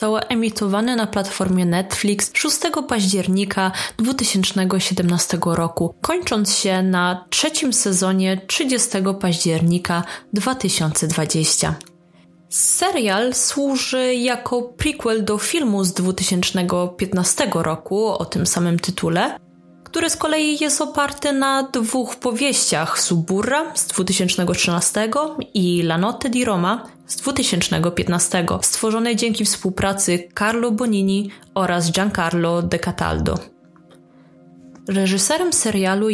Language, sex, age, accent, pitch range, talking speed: Polish, female, 20-39, native, 175-225 Hz, 100 wpm